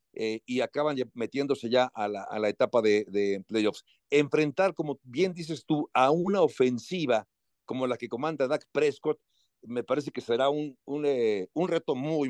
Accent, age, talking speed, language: Mexican, 60-79, 185 wpm, Spanish